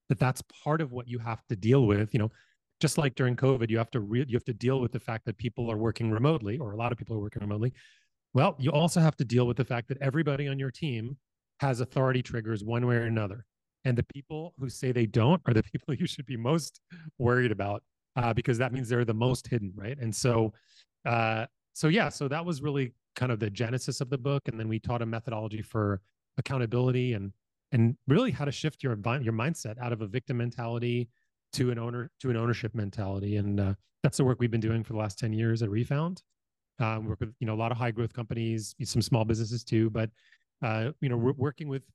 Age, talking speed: 30-49, 240 wpm